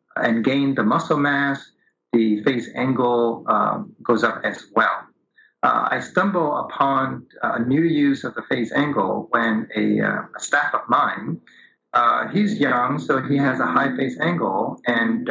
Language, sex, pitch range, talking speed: English, male, 120-150 Hz, 165 wpm